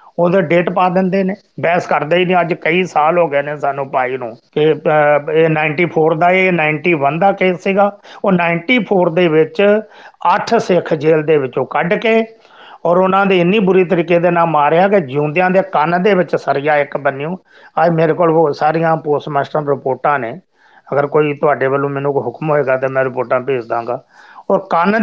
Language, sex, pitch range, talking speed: Punjabi, male, 145-180 Hz, 155 wpm